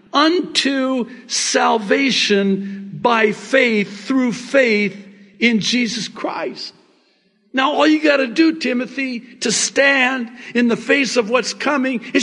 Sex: male